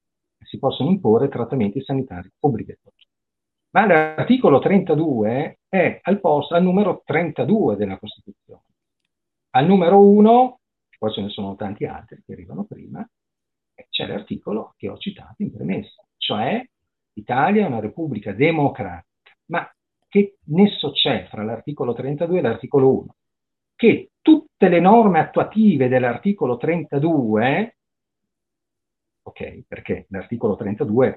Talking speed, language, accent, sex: 120 wpm, Italian, native, male